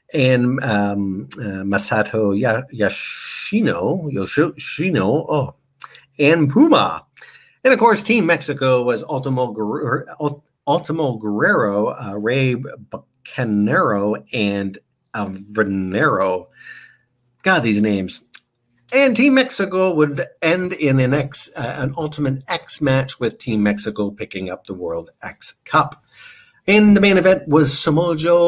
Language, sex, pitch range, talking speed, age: English, male, 110-180 Hz, 115 wpm, 50-69